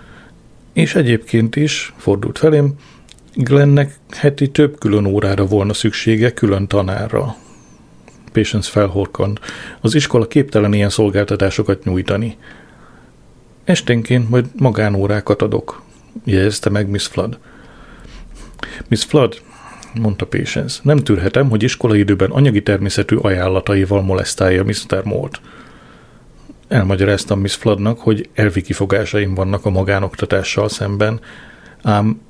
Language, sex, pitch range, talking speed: Hungarian, male, 100-115 Hz, 105 wpm